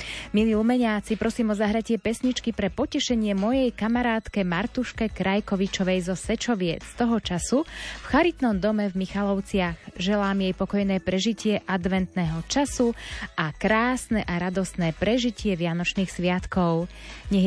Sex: female